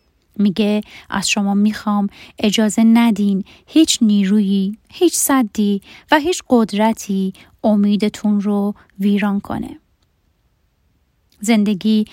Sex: female